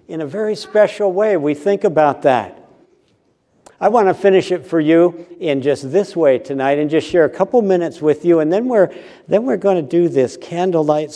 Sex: male